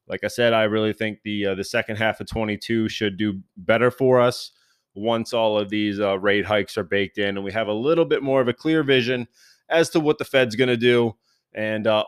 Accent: American